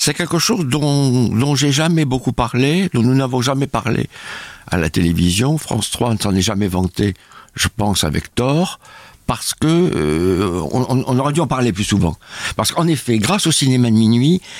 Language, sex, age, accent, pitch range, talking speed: French, male, 60-79, French, 95-130 Hz, 195 wpm